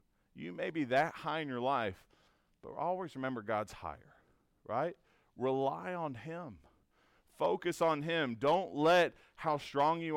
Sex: male